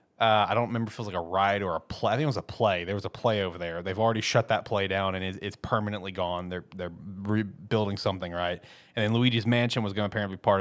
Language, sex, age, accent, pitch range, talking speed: English, male, 30-49, American, 100-125 Hz, 290 wpm